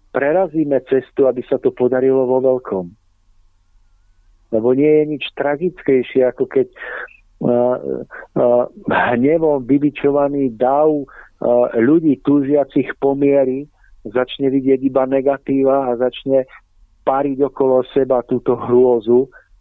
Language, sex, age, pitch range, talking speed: Slovak, male, 50-69, 115-140 Hz, 105 wpm